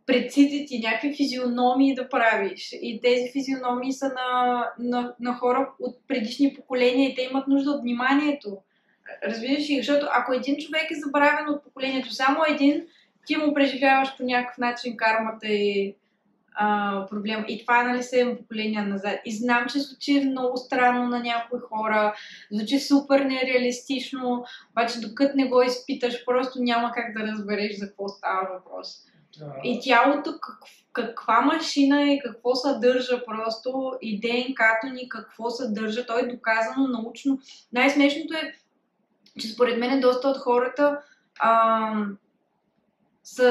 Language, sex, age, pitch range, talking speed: Bulgarian, female, 20-39, 225-275 Hz, 150 wpm